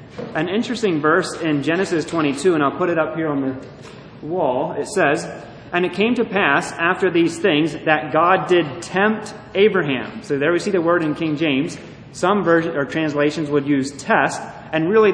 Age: 30-49